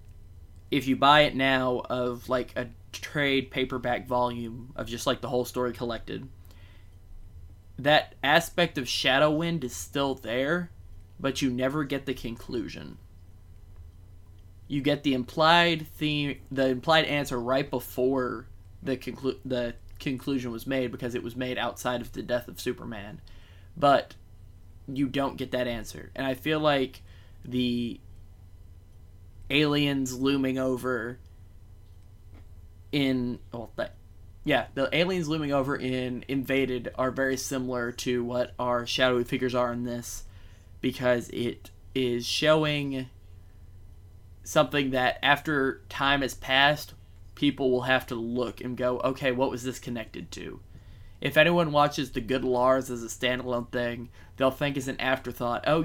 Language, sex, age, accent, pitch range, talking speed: English, male, 20-39, American, 95-135 Hz, 140 wpm